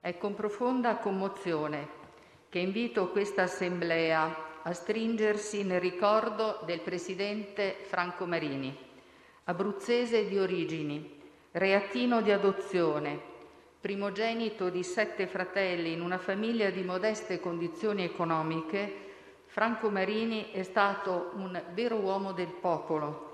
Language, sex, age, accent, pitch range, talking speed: Italian, female, 50-69, native, 175-215 Hz, 110 wpm